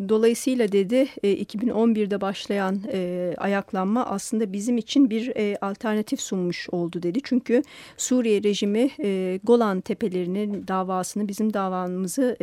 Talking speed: 100 wpm